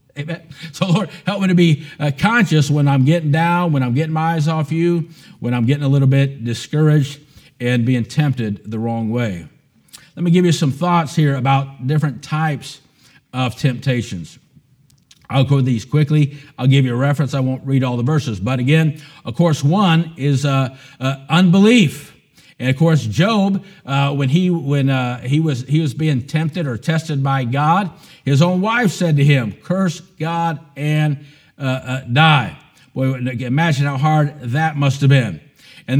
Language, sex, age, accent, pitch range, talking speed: English, male, 50-69, American, 135-165 Hz, 180 wpm